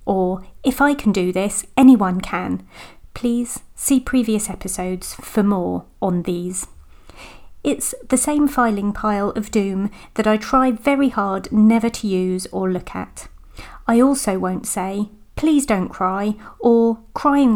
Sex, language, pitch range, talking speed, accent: female, English, 190-245 Hz, 145 wpm, British